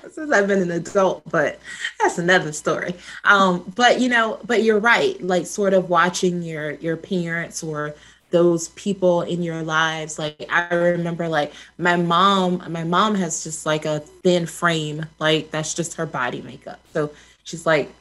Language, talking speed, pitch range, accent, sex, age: English, 170 wpm, 160-200 Hz, American, female, 20-39